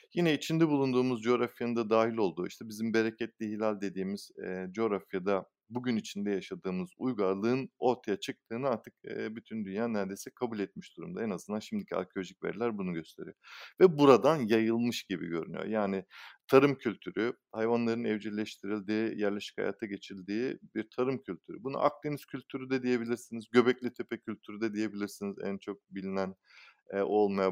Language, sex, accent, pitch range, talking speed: Turkish, male, native, 105-145 Hz, 135 wpm